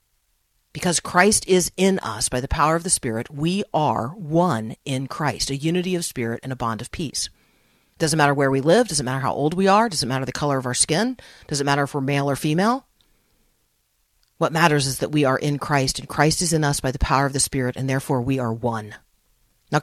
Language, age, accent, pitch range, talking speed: English, 40-59, American, 130-175 Hz, 230 wpm